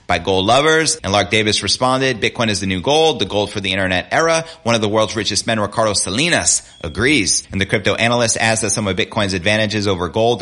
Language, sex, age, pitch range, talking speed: English, male, 30-49, 95-120 Hz, 225 wpm